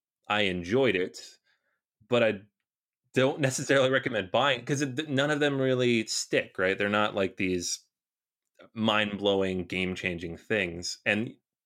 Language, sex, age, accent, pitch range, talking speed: English, male, 30-49, American, 95-120 Hz, 125 wpm